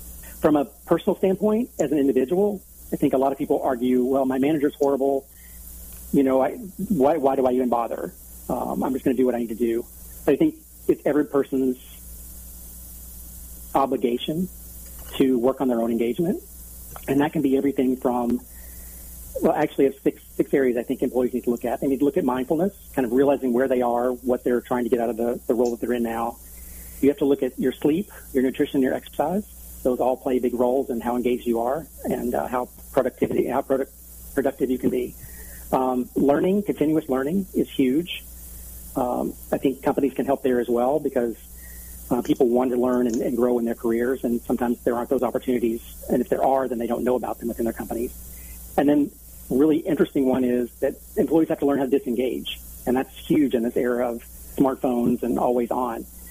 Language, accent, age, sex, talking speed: English, American, 40-59, male, 210 wpm